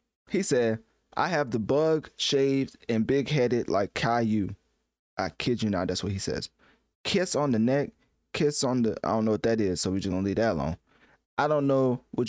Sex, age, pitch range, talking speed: male, 20-39, 105-130 Hz, 215 wpm